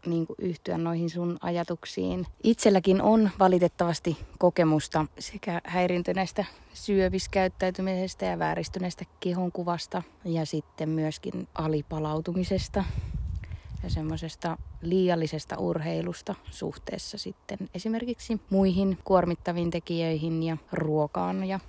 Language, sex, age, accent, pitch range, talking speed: Finnish, female, 20-39, native, 160-185 Hz, 85 wpm